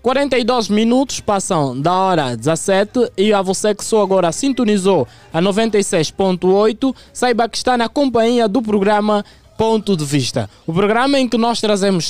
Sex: male